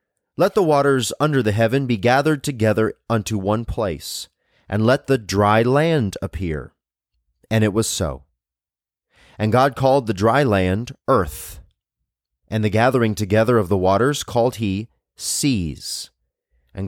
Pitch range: 95-130 Hz